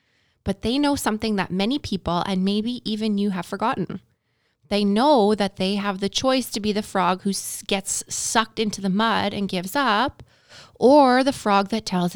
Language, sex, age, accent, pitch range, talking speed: English, female, 20-39, American, 175-240 Hz, 190 wpm